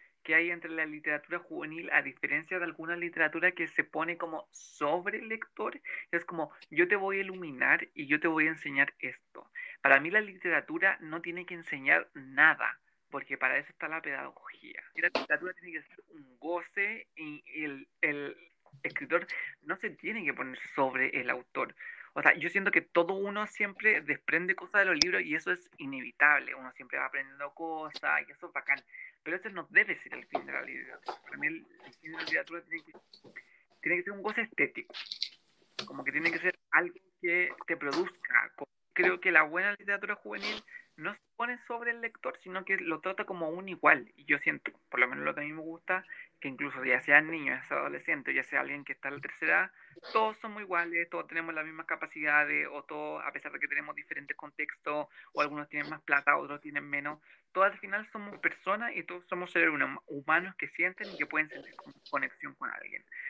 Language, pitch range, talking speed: Spanish, 155-205 Hz, 210 wpm